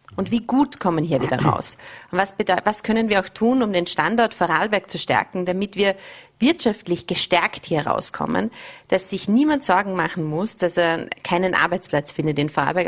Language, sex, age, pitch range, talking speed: German, female, 30-49, 170-210 Hz, 190 wpm